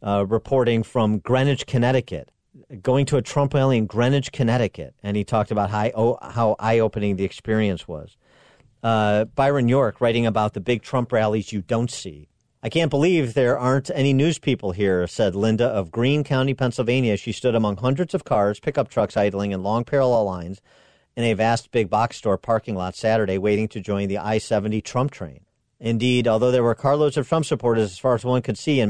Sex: male